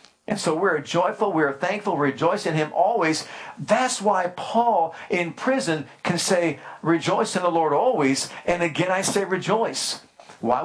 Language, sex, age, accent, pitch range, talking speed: English, male, 50-69, American, 150-195 Hz, 165 wpm